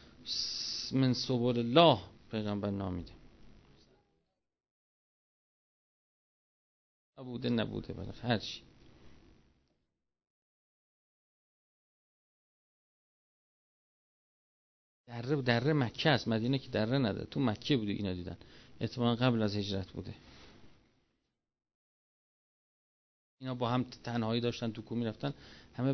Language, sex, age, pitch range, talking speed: Persian, male, 40-59, 110-155 Hz, 85 wpm